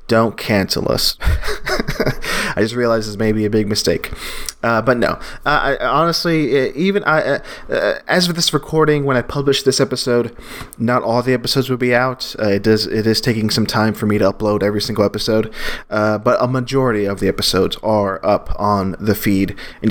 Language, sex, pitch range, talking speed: English, male, 105-135 Hz, 200 wpm